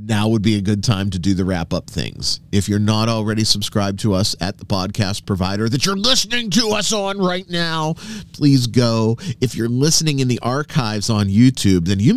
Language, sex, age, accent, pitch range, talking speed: English, male, 40-59, American, 100-140 Hz, 205 wpm